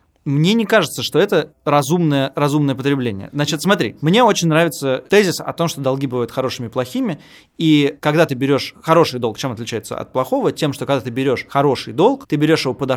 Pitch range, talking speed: 125-155 Hz, 200 wpm